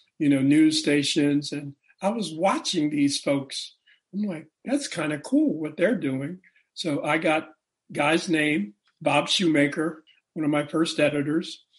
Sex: male